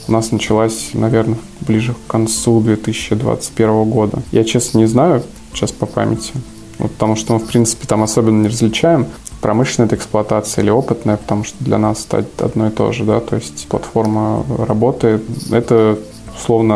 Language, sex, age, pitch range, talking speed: Russian, male, 20-39, 110-120 Hz, 170 wpm